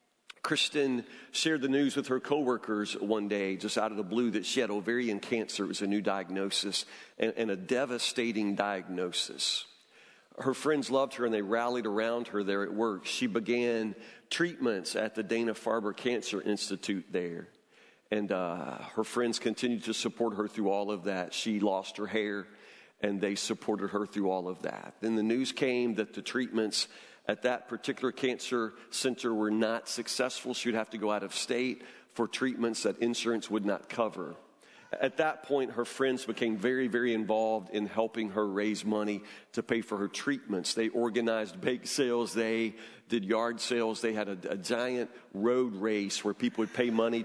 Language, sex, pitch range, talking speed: English, male, 105-120 Hz, 180 wpm